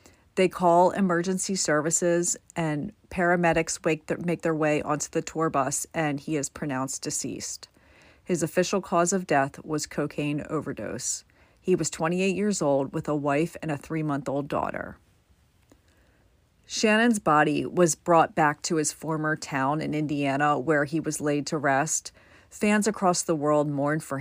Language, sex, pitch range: English, female, 145-170 Hz